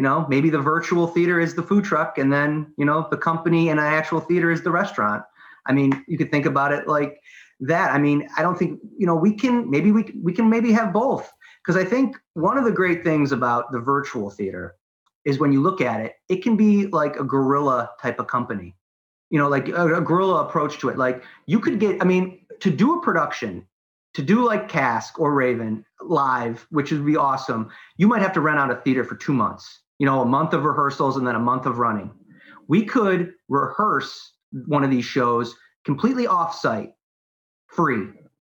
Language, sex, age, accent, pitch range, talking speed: English, male, 30-49, American, 140-185 Hz, 210 wpm